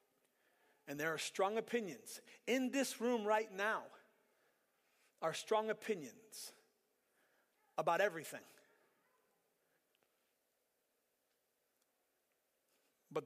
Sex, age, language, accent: male, 30-49, English, American